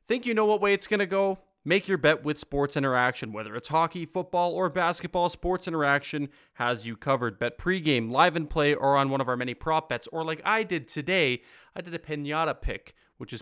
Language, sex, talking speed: English, male, 225 wpm